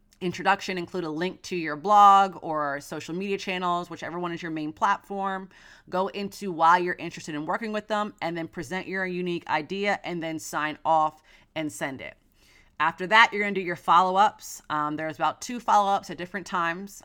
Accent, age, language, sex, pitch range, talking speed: American, 30-49, English, female, 160-190 Hz, 195 wpm